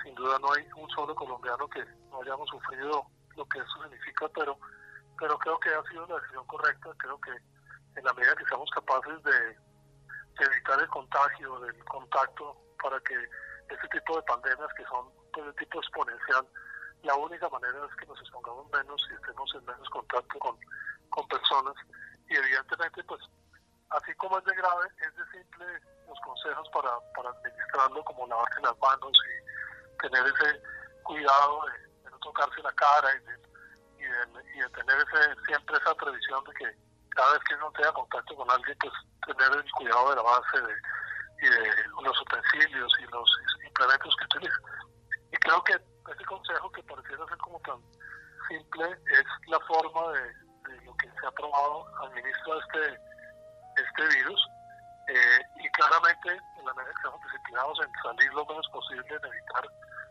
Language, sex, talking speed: Spanish, male, 180 wpm